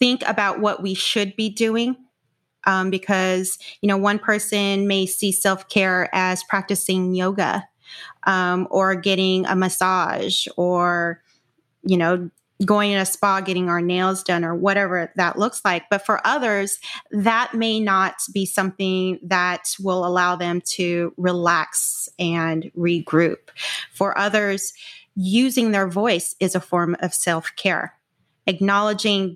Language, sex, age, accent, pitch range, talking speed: English, female, 30-49, American, 185-210 Hz, 135 wpm